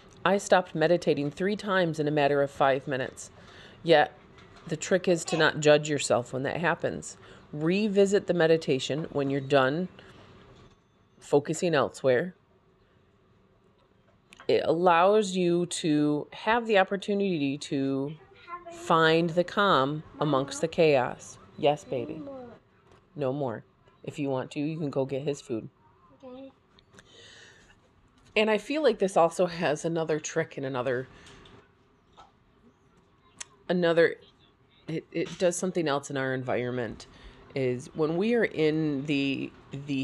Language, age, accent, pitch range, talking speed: English, 30-49, American, 135-175 Hz, 125 wpm